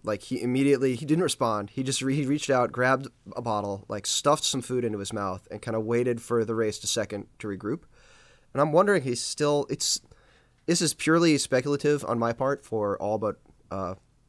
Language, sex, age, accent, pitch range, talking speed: English, male, 20-39, American, 110-135 Hz, 215 wpm